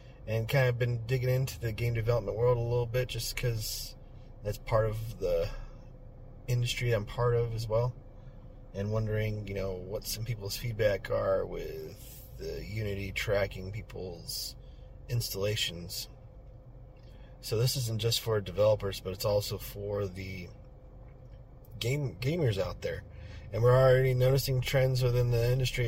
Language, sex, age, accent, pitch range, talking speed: English, male, 30-49, American, 105-125 Hz, 145 wpm